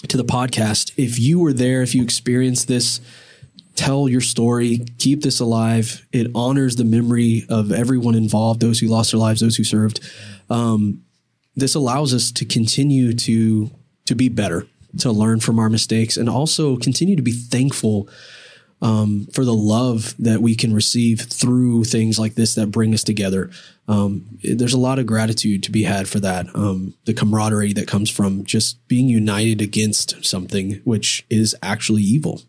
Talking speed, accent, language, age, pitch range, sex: 175 wpm, American, English, 20-39, 110-125 Hz, male